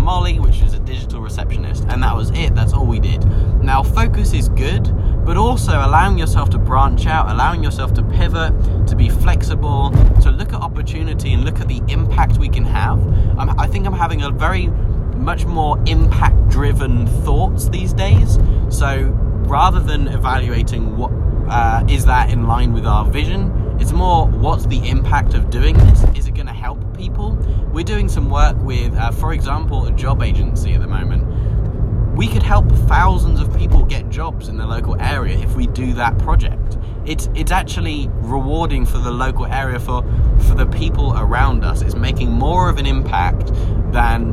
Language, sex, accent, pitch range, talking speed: English, male, British, 95-110 Hz, 185 wpm